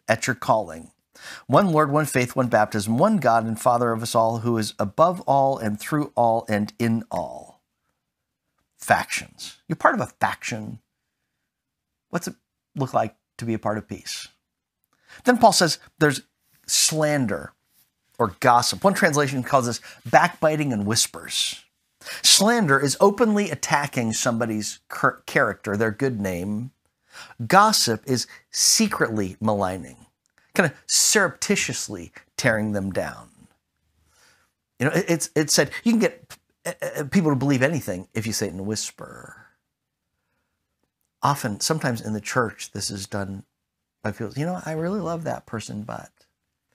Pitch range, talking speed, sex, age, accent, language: 110-155 Hz, 145 wpm, male, 50-69, American, English